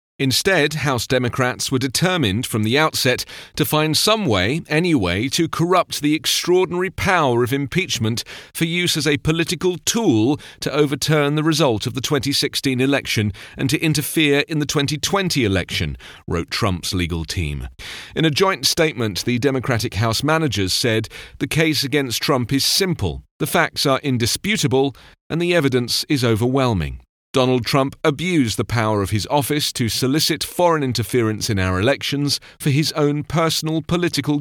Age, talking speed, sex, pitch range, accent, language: 40-59, 155 wpm, male, 110-155 Hz, British, English